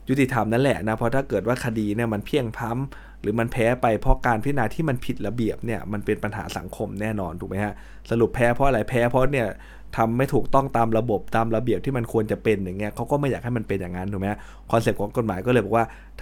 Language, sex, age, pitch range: Thai, male, 20-39, 100-125 Hz